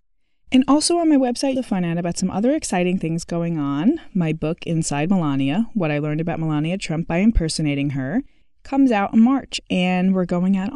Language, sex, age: English, female, 20-39